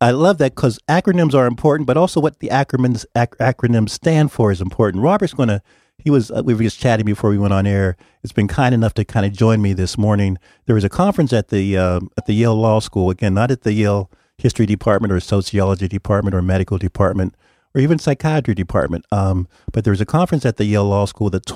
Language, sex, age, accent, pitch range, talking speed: English, male, 40-59, American, 100-125 Hz, 240 wpm